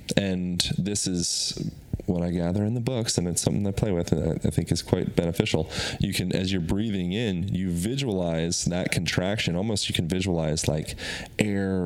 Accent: American